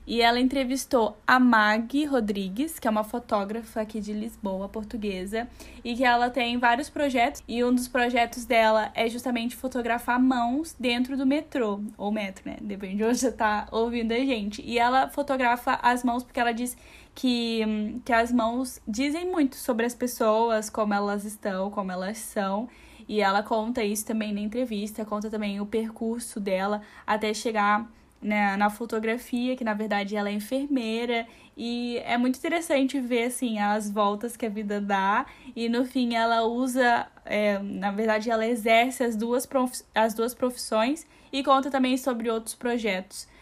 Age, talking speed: 10-29, 170 wpm